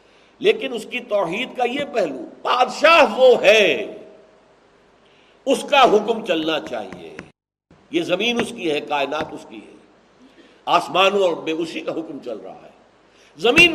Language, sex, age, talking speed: Urdu, male, 60-79, 150 wpm